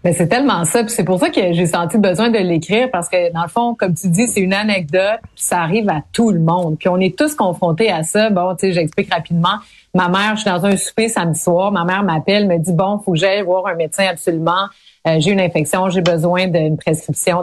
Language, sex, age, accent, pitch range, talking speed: French, female, 30-49, Canadian, 170-210 Hz, 250 wpm